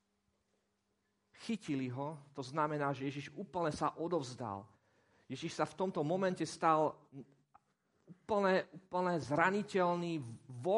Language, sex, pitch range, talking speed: Slovak, male, 140-190 Hz, 100 wpm